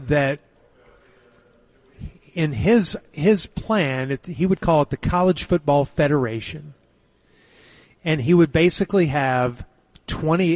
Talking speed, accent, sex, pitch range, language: 110 wpm, American, male, 120-145 Hz, English